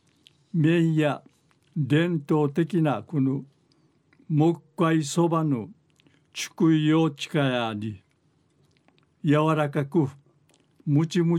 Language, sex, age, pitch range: Japanese, male, 60-79, 140-160 Hz